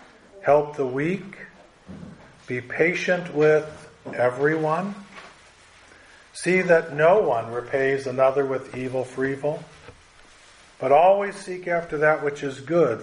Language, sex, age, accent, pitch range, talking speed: English, male, 50-69, American, 120-155 Hz, 115 wpm